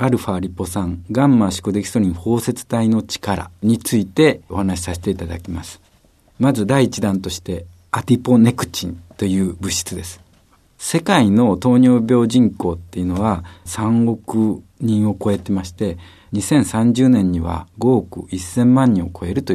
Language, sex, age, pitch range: Japanese, male, 50-69, 90-115 Hz